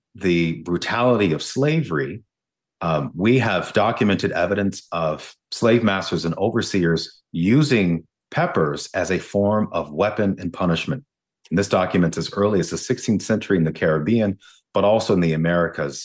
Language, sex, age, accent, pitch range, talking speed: English, male, 30-49, American, 80-100 Hz, 145 wpm